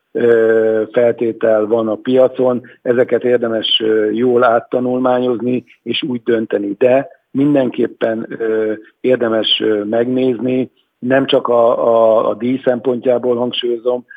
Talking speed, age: 95 wpm, 50-69